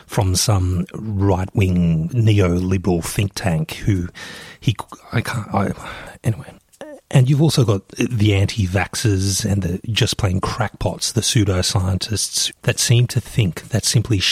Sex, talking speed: male, 140 wpm